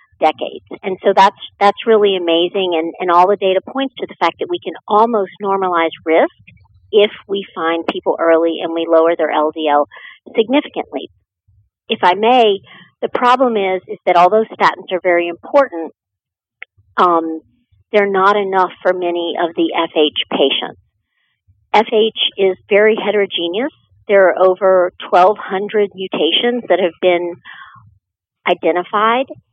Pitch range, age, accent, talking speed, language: 165-205 Hz, 50-69, American, 140 wpm, English